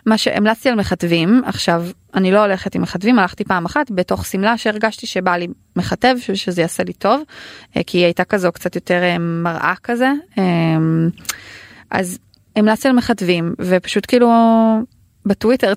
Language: Hebrew